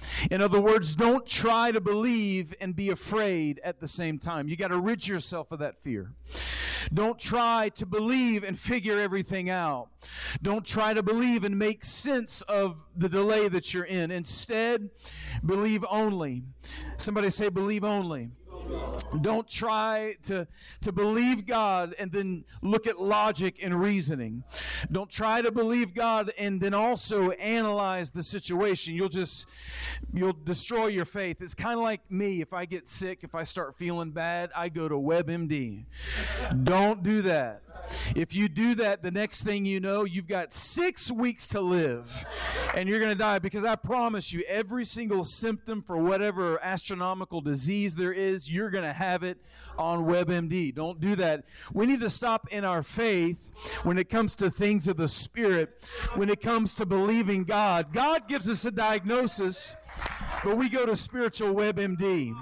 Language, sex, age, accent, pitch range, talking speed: English, male, 40-59, American, 175-215 Hz, 170 wpm